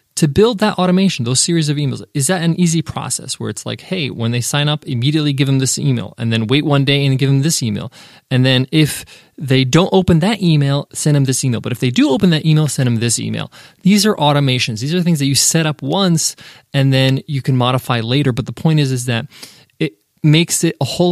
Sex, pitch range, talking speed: male, 130-165 Hz, 245 wpm